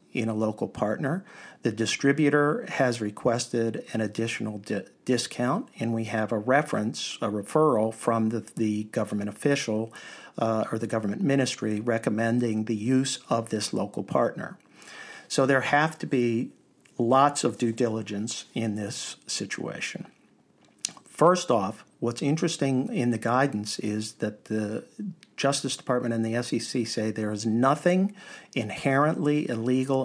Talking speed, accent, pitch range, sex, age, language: 135 wpm, American, 115-140 Hz, male, 50-69, English